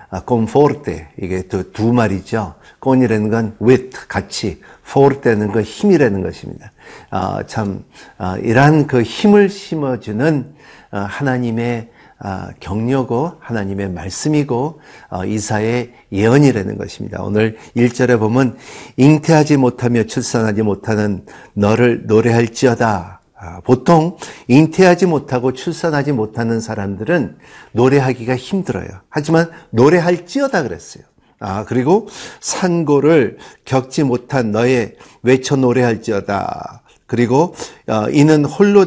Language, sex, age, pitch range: Korean, male, 50-69, 110-150 Hz